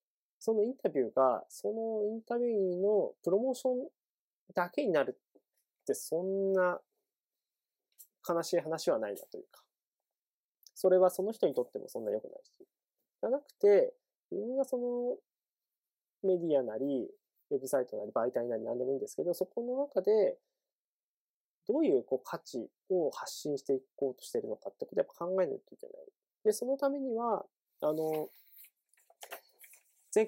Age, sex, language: 20-39, male, Japanese